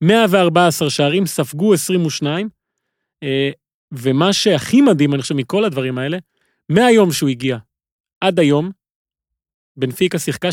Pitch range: 135-175 Hz